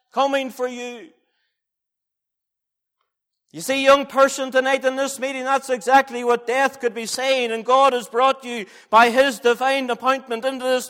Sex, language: male, English